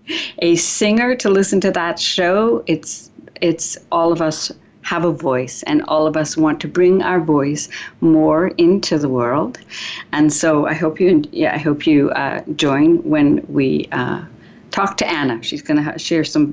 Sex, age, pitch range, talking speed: female, 60-79, 155-200 Hz, 185 wpm